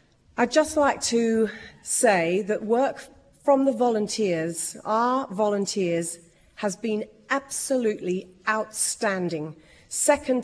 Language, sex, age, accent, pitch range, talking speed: English, female, 40-59, British, 190-235 Hz, 100 wpm